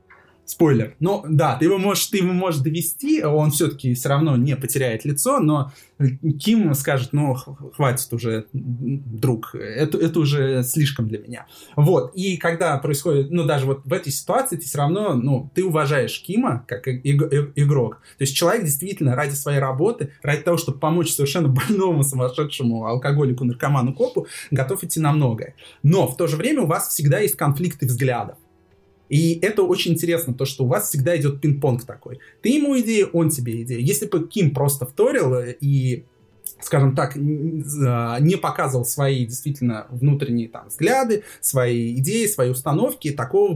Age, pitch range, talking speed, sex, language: 20-39, 130-165 Hz, 160 wpm, male, Russian